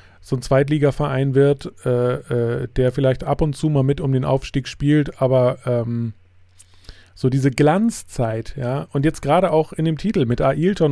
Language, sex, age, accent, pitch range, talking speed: German, male, 30-49, German, 120-145 Hz, 175 wpm